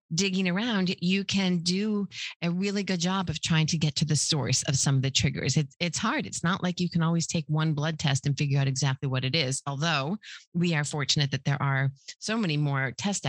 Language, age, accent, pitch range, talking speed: English, 40-59, American, 140-175 Hz, 230 wpm